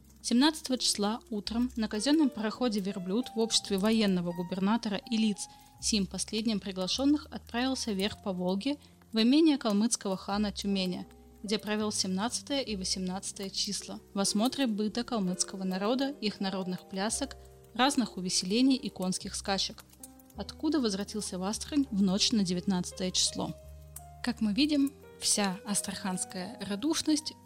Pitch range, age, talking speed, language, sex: 195-240 Hz, 20-39, 130 wpm, Russian, female